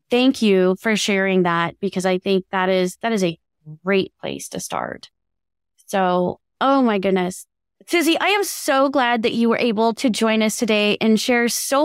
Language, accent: English, American